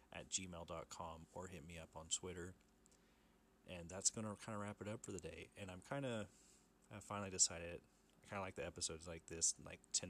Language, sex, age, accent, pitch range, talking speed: English, male, 30-49, American, 85-100 Hz, 220 wpm